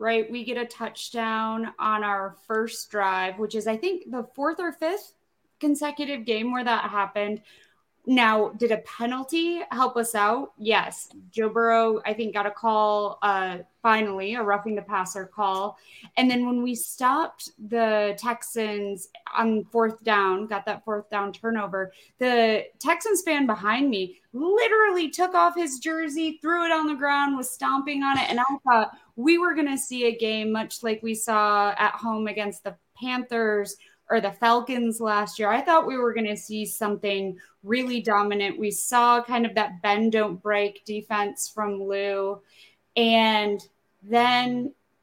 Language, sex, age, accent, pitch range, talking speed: English, female, 20-39, American, 210-275 Hz, 165 wpm